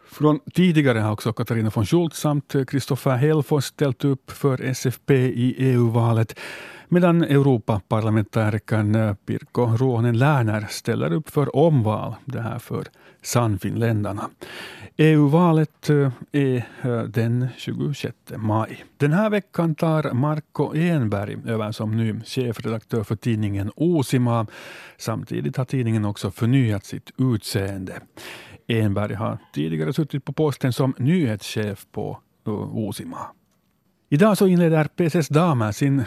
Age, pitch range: 50-69, 110-145 Hz